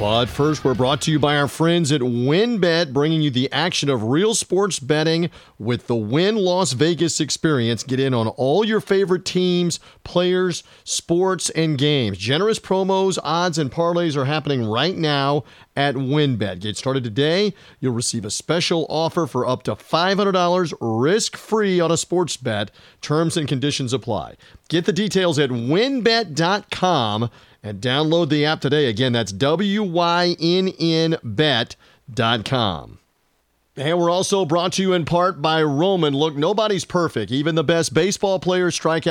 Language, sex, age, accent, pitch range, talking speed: English, male, 40-59, American, 130-175 Hz, 155 wpm